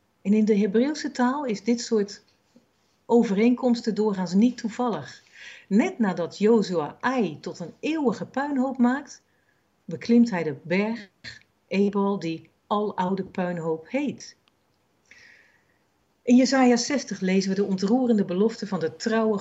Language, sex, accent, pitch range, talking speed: Dutch, female, Dutch, 170-230 Hz, 125 wpm